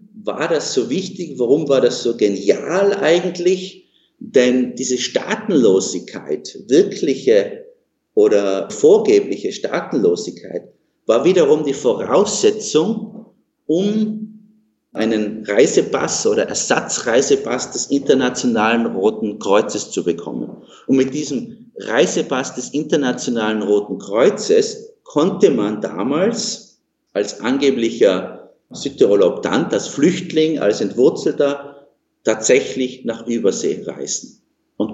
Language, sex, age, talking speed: German, male, 50-69, 95 wpm